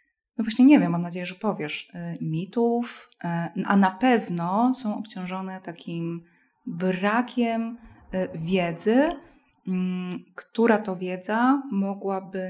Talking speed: 100 wpm